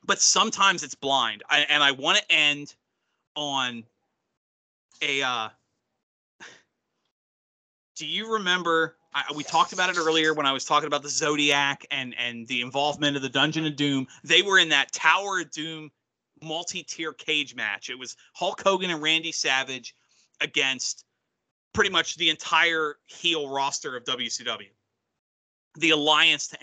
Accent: American